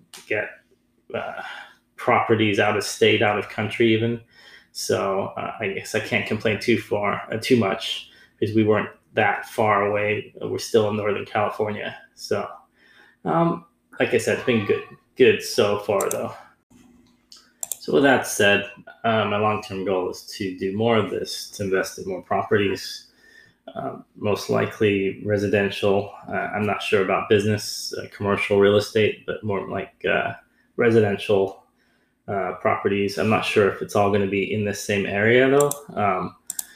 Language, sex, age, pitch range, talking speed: English, male, 20-39, 100-120 Hz, 165 wpm